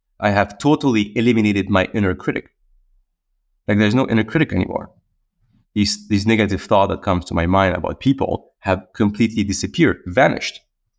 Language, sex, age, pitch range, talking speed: English, male, 30-49, 95-120 Hz, 155 wpm